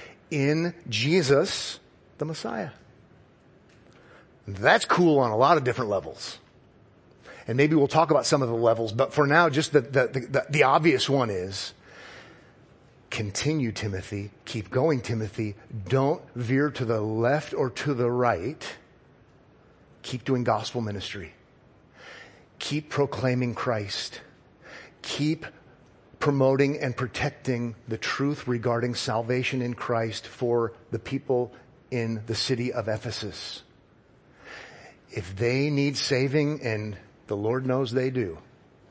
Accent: American